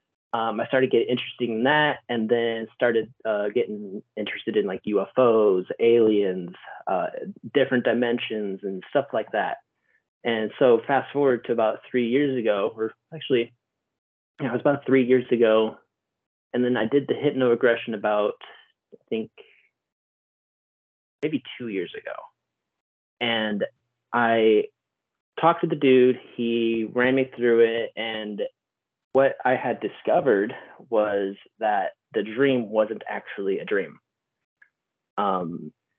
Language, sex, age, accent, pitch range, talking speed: English, male, 30-49, American, 110-135 Hz, 130 wpm